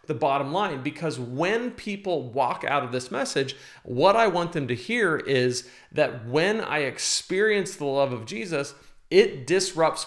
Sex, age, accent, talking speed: male, 40-59, American, 165 wpm